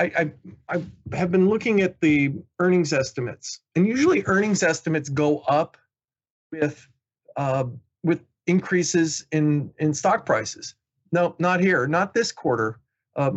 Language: English